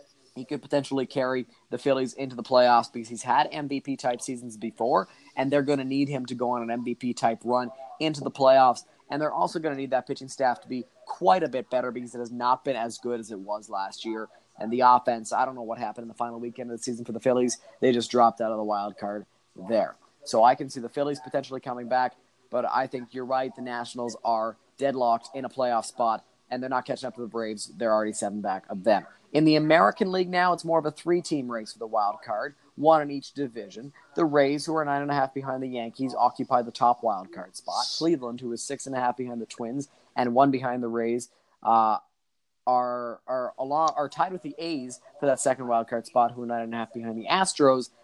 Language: English